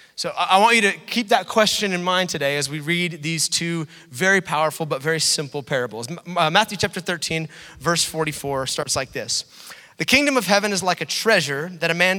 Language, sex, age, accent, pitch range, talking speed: English, male, 30-49, American, 140-180 Hz, 200 wpm